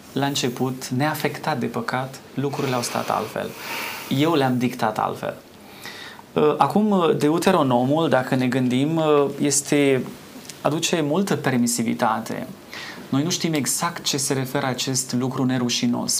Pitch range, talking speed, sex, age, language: 125-155 Hz, 115 wpm, male, 20-39, Romanian